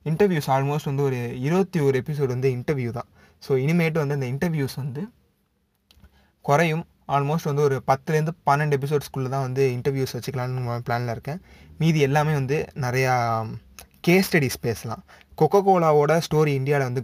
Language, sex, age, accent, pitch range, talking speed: Tamil, male, 20-39, native, 120-150 Hz, 140 wpm